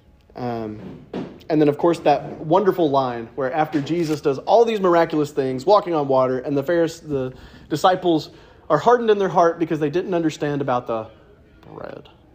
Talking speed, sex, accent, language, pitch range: 175 wpm, male, American, English, 125-160 Hz